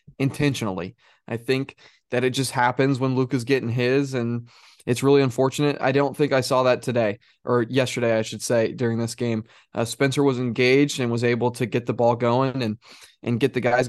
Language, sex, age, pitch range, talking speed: English, male, 20-39, 120-140 Hz, 205 wpm